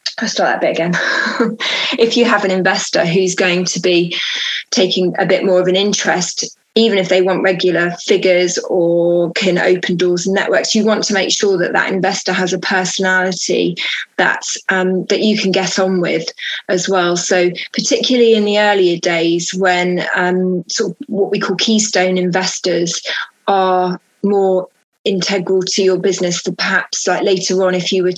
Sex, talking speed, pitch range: female, 175 wpm, 180-200 Hz